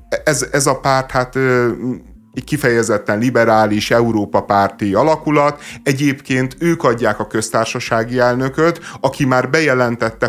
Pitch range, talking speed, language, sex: 105-125 Hz, 105 wpm, Hungarian, male